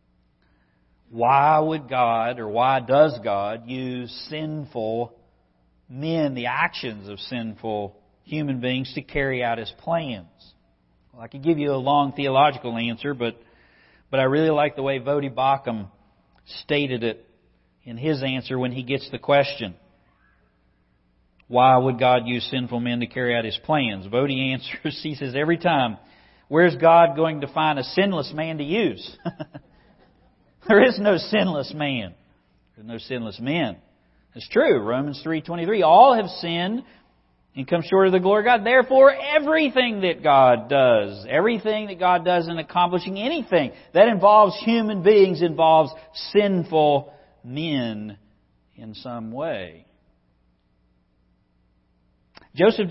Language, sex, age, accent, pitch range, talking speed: English, male, 50-69, American, 110-160 Hz, 140 wpm